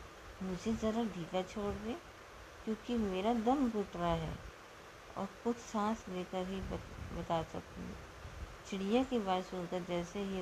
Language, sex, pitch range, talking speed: Hindi, female, 185-215 Hz, 145 wpm